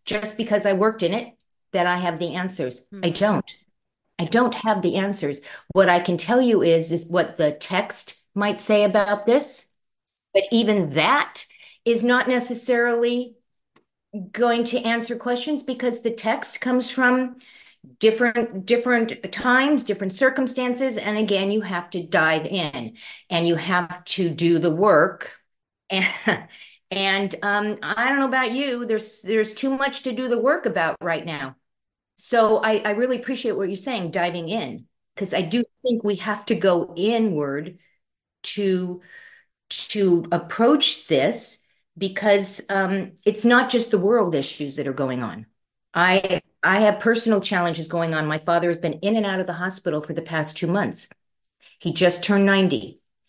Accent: American